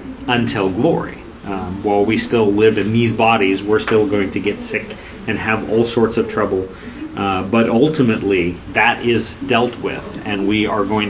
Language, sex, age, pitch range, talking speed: English, male, 30-49, 95-125 Hz, 180 wpm